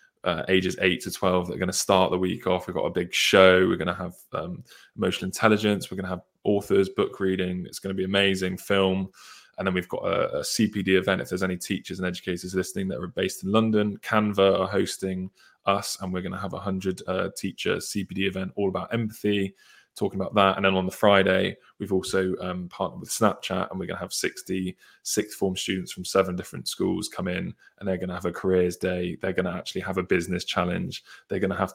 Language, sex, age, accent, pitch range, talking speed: English, male, 20-39, British, 95-100 Hz, 235 wpm